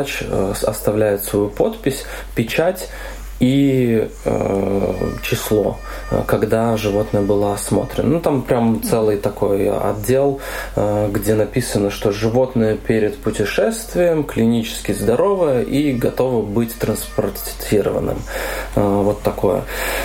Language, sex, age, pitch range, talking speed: Russian, male, 20-39, 105-135 Hz, 100 wpm